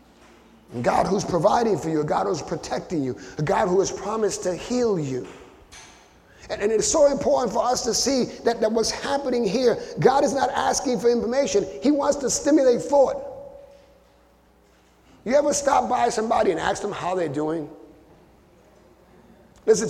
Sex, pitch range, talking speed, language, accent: male, 205-285 Hz, 165 wpm, English, American